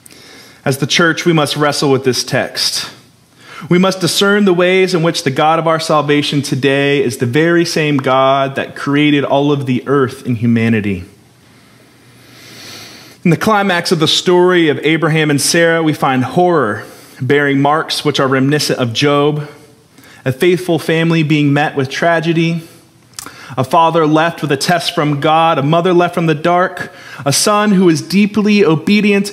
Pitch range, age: 135-165 Hz, 30-49